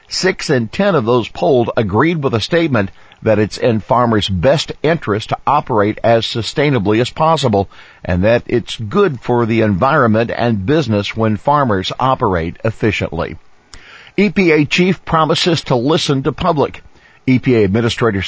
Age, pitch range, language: 50-69, 105-135 Hz, English